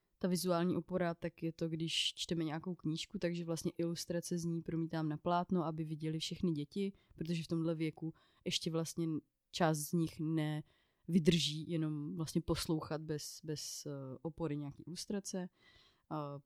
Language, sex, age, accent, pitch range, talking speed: Czech, female, 20-39, native, 150-175 Hz, 150 wpm